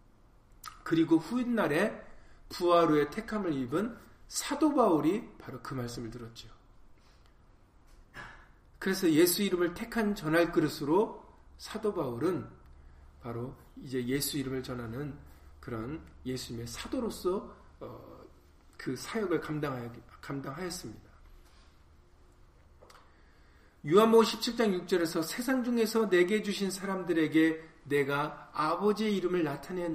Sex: male